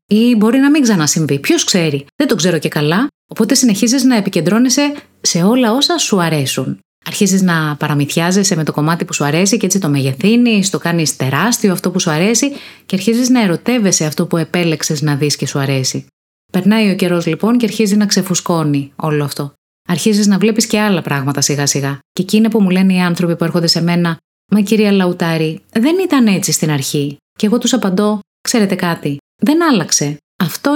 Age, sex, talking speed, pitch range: 30-49, female, 195 wpm, 155-215 Hz